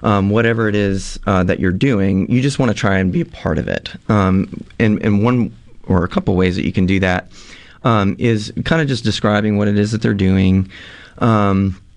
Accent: American